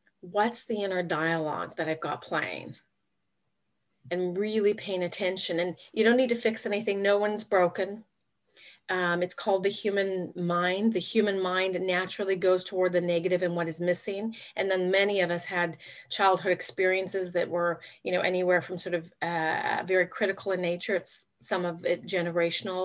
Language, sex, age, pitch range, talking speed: English, female, 40-59, 175-200 Hz, 175 wpm